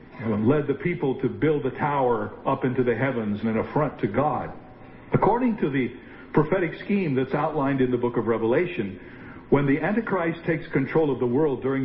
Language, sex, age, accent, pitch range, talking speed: English, male, 50-69, American, 130-180 Hz, 190 wpm